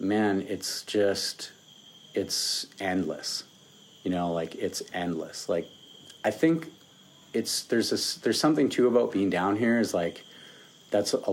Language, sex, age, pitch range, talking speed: English, male, 30-49, 90-105 Hz, 145 wpm